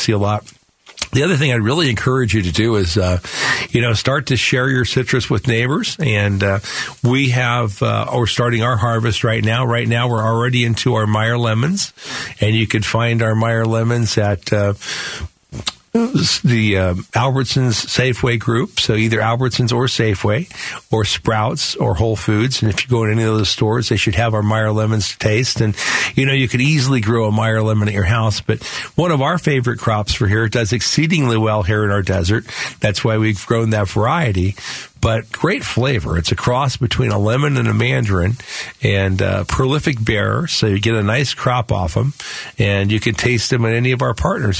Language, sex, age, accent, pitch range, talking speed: English, male, 50-69, American, 110-130 Hz, 205 wpm